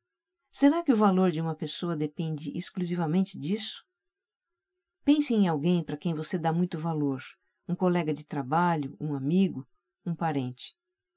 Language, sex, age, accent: Portuguese, female, 50-69, Brazilian